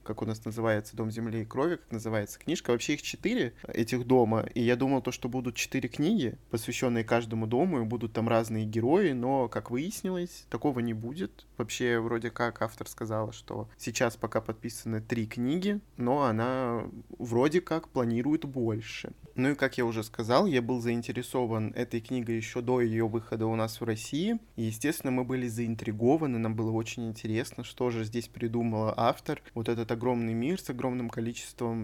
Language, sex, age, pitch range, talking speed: Russian, male, 20-39, 115-135 Hz, 180 wpm